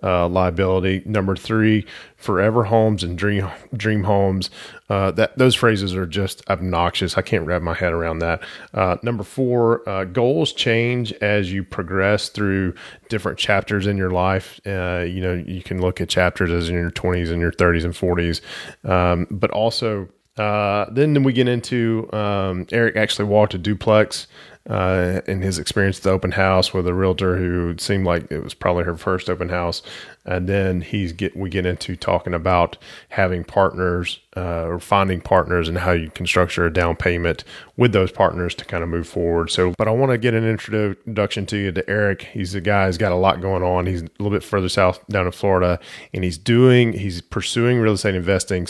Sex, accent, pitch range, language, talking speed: male, American, 90-105 Hz, English, 195 wpm